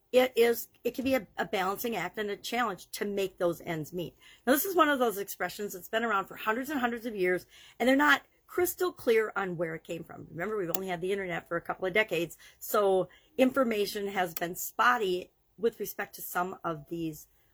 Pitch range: 175-230 Hz